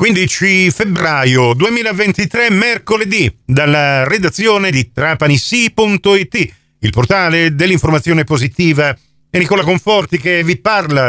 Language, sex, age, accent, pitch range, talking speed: Italian, male, 50-69, native, 130-175 Hz, 95 wpm